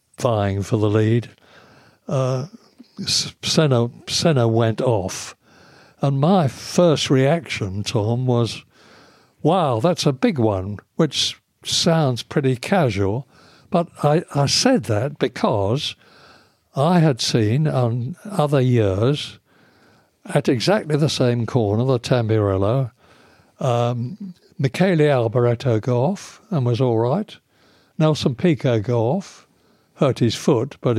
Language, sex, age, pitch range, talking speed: English, male, 60-79, 115-150 Hz, 115 wpm